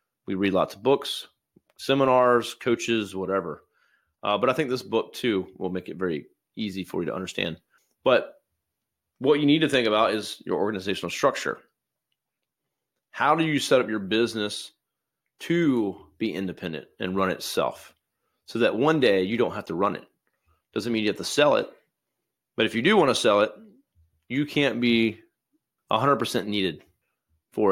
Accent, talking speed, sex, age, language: American, 170 wpm, male, 30-49, English